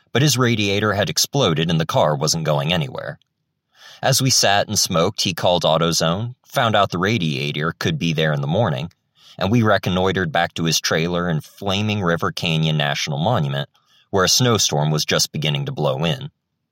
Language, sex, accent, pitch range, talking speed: English, male, American, 80-110 Hz, 185 wpm